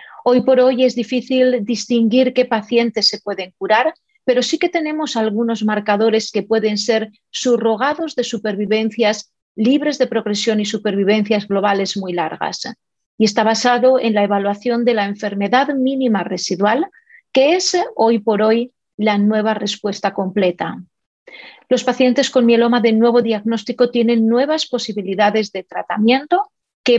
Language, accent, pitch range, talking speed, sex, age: Spanish, Spanish, 205-255 Hz, 140 wpm, female, 40-59